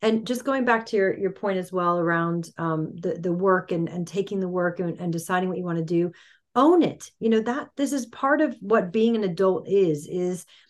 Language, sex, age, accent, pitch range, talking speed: English, female, 40-59, American, 180-225 Hz, 240 wpm